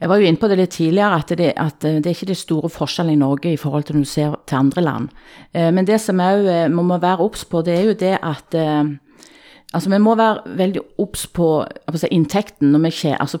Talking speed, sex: 250 wpm, female